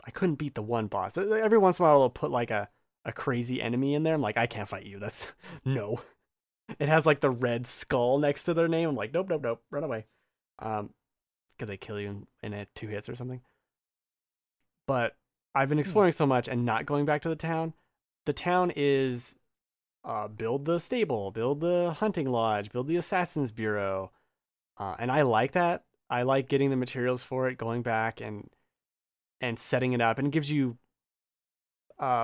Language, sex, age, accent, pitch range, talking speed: English, male, 20-39, American, 115-155 Hz, 200 wpm